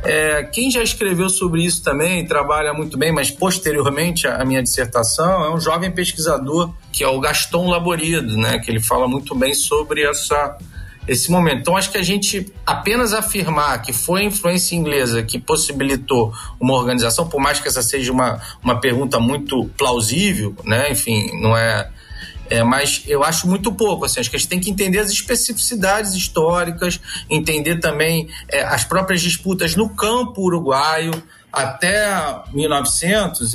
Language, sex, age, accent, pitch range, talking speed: Portuguese, male, 40-59, Brazilian, 140-185 Hz, 160 wpm